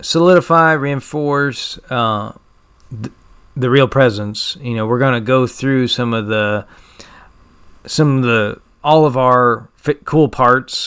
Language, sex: English, male